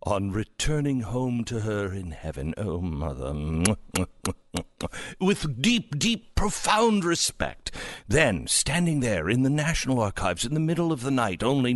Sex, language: male, English